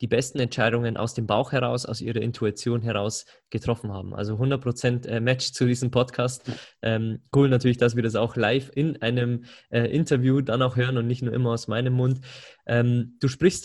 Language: German